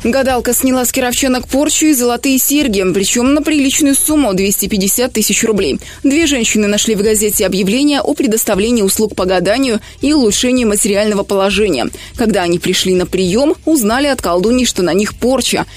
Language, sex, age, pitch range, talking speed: Russian, female, 20-39, 190-255 Hz, 165 wpm